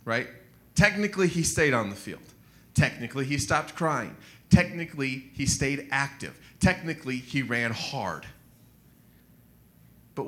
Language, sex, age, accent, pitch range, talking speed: English, male, 30-49, American, 110-140 Hz, 115 wpm